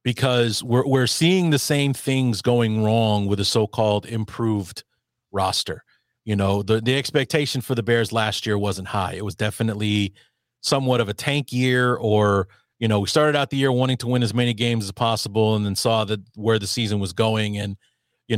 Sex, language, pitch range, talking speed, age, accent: male, English, 105-120 Hz, 200 wpm, 30-49, American